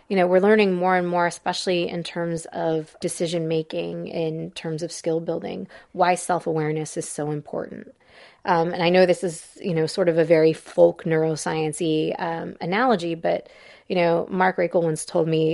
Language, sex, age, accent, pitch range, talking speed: English, female, 30-49, American, 165-185 Hz, 180 wpm